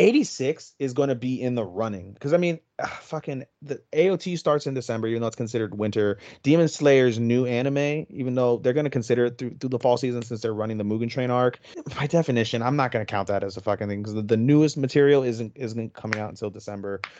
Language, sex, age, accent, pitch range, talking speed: English, male, 30-49, American, 105-130 Hz, 235 wpm